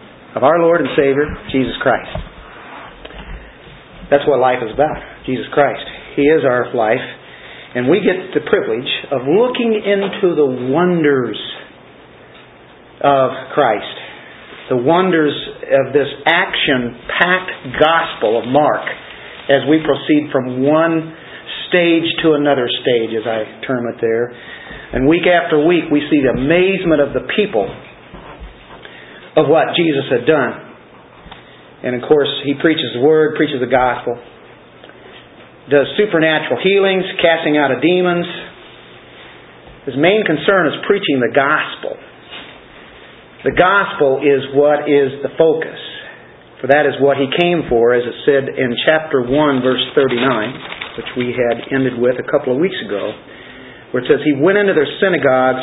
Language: English